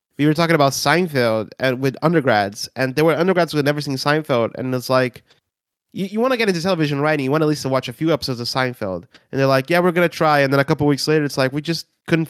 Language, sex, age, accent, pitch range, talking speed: English, male, 30-49, American, 125-165 Hz, 285 wpm